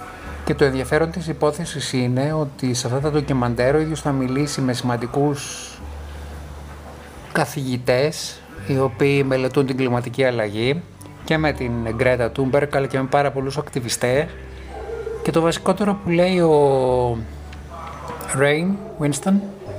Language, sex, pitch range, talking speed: Greek, male, 120-150 Hz, 130 wpm